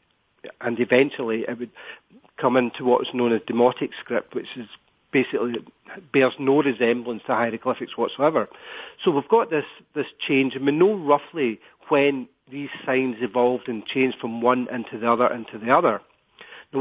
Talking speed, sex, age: 160 wpm, male, 40-59